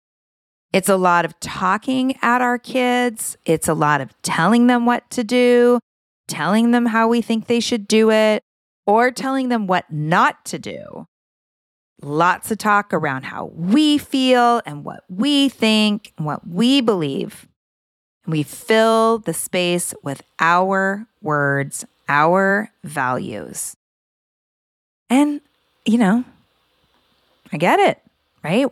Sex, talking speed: female, 135 wpm